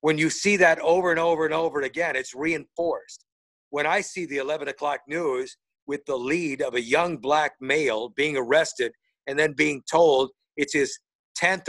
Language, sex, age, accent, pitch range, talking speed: English, male, 50-69, American, 150-210 Hz, 185 wpm